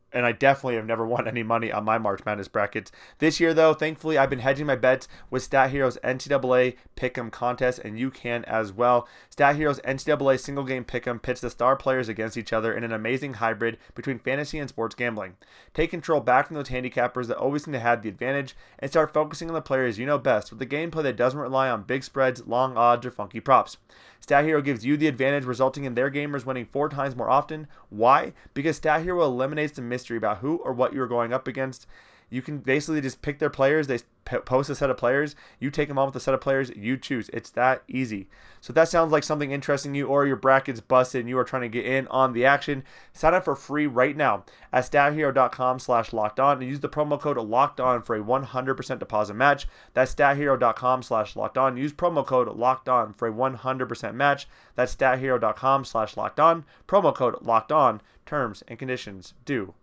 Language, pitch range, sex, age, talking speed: English, 120-140 Hz, male, 20-39, 220 wpm